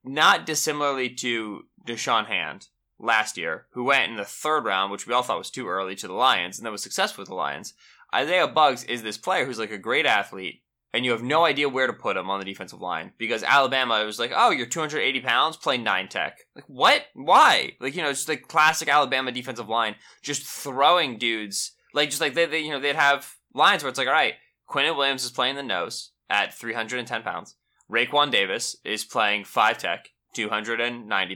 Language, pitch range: English, 120-160 Hz